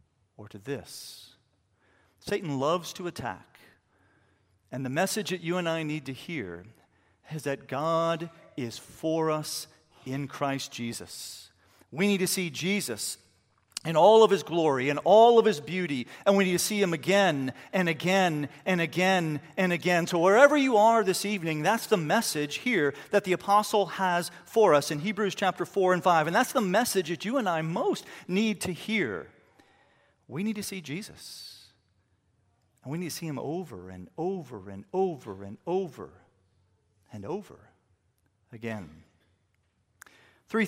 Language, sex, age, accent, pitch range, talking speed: English, male, 40-59, American, 115-185 Hz, 160 wpm